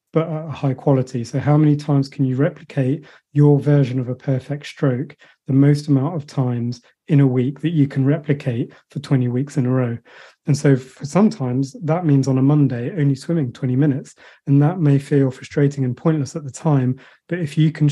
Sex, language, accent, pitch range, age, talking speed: male, English, British, 130-145 Hz, 30-49, 210 wpm